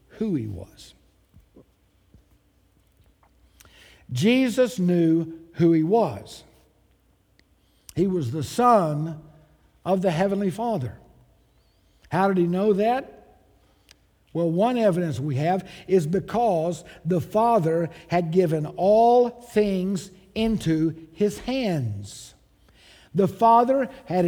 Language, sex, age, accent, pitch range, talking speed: English, male, 60-79, American, 155-215 Hz, 100 wpm